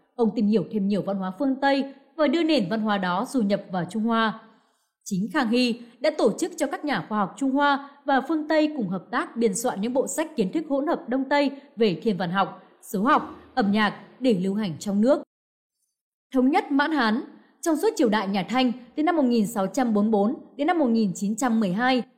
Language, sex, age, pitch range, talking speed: Vietnamese, female, 20-39, 205-275 Hz, 215 wpm